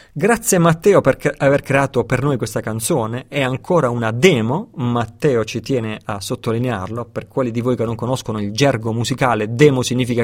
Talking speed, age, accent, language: 175 wpm, 30-49, native, Italian